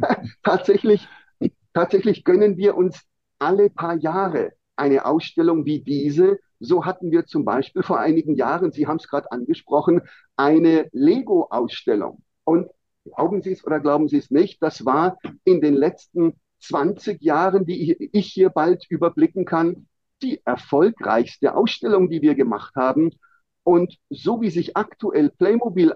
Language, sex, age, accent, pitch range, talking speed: German, male, 50-69, German, 155-210 Hz, 145 wpm